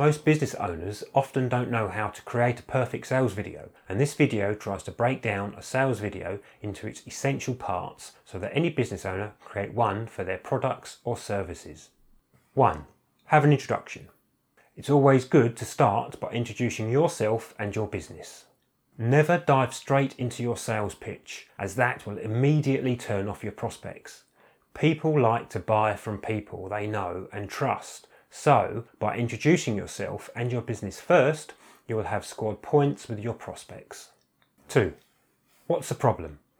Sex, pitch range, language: male, 105-135 Hz, English